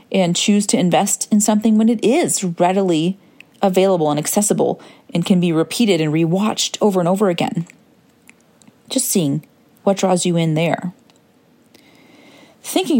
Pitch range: 185-230 Hz